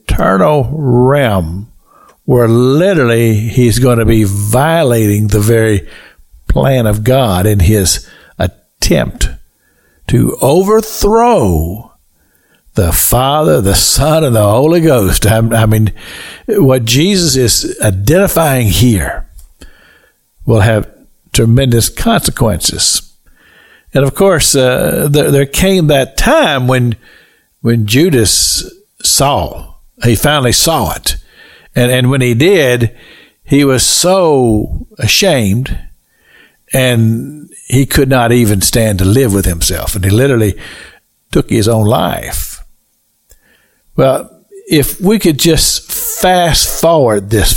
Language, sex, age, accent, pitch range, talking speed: English, male, 60-79, American, 110-150 Hz, 115 wpm